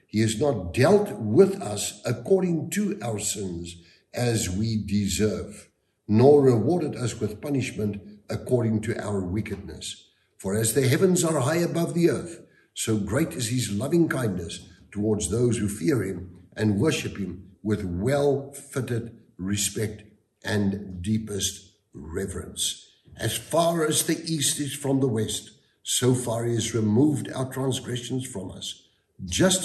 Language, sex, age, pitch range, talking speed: English, male, 60-79, 95-130 Hz, 140 wpm